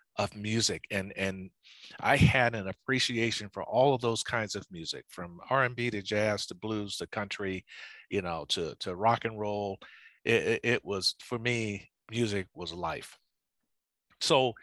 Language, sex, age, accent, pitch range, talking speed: English, male, 50-69, American, 100-120 Hz, 160 wpm